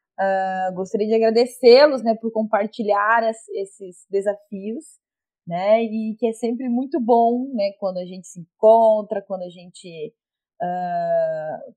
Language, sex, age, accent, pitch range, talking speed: Portuguese, female, 20-39, Brazilian, 180-220 Hz, 140 wpm